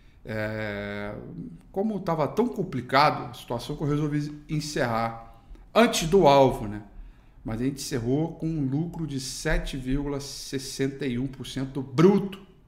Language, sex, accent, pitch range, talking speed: Portuguese, male, Brazilian, 130-195 Hz, 115 wpm